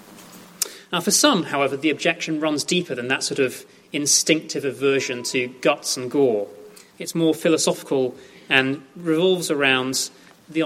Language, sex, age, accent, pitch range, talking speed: English, male, 30-49, British, 140-190 Hz, 140 wpm